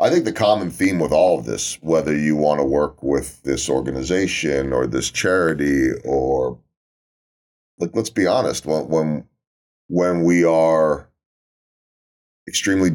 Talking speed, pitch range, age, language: 140 wpm, 70-95 Hz, 30-49, English